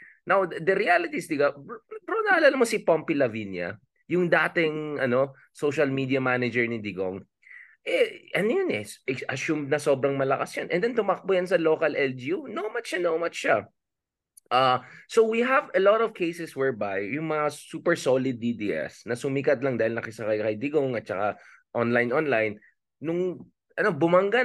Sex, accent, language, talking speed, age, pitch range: male, Filipino, English, 170 wpm, 20-39, 125-185 Hz